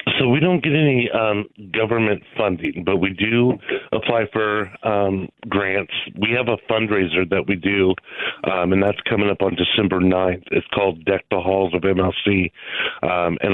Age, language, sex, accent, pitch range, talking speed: 40-59, English, male, American, 95-110 Hz, 175 wpm